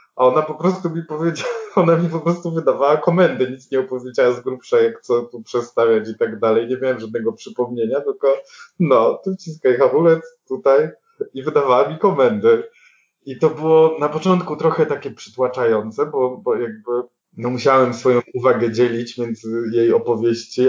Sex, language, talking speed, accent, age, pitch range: male, Polish, 165 wpm, native, 20-39, 115-155 Hz